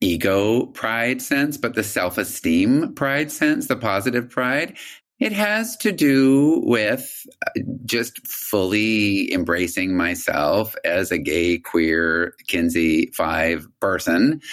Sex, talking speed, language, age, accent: male, 110 wpm, English, 50-69, American